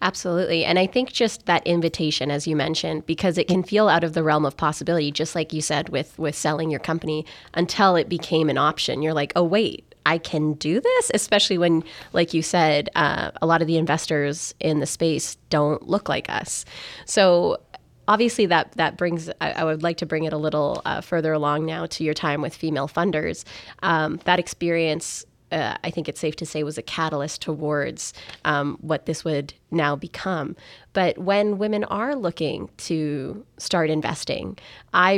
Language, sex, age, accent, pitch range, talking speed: English, female, 20-39, American, 150-170 Hz, 195 wpm